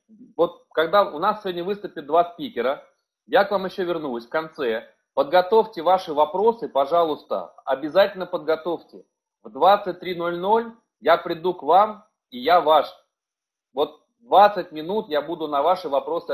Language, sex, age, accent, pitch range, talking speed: Russian, male, 30-49, native, 160-205 Hz, 140 wpm